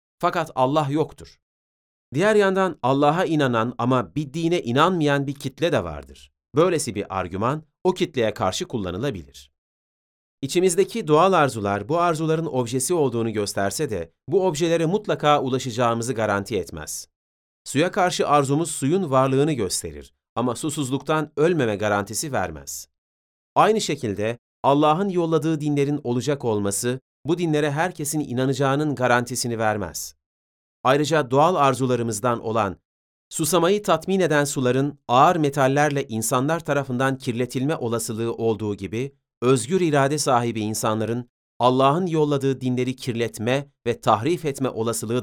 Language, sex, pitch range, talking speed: Turkish, male, 105-150 Hz, 120 wpm